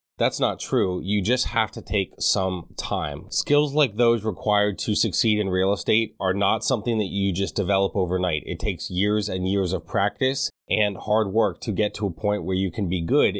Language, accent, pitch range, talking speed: English, American, 90-110 Hz, 210 wpm